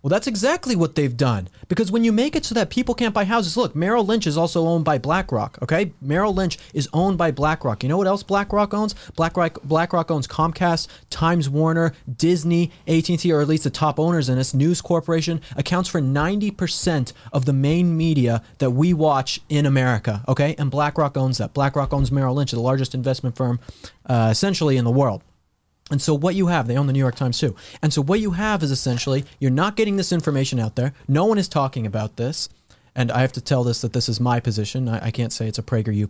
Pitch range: 125-165 Hz